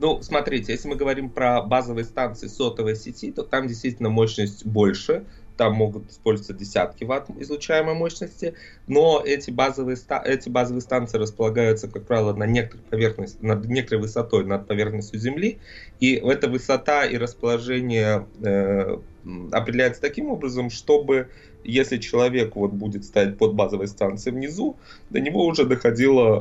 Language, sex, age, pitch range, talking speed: Russian, male, 20-39, 105-130 Hz, 145 wpm